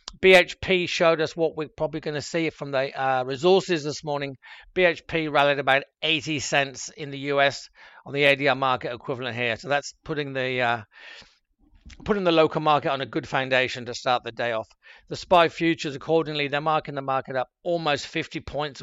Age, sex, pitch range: 50-69, male, 140-170 Hz